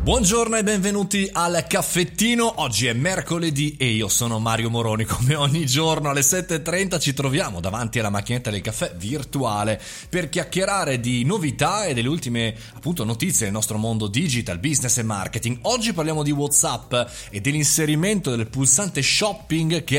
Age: 30-49